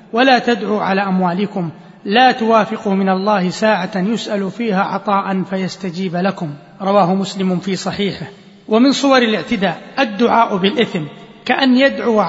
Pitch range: 195-230 Hz